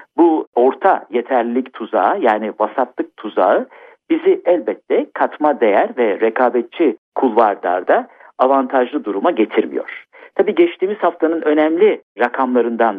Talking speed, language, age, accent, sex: 100 wpm, Turkish, 60-79, native, male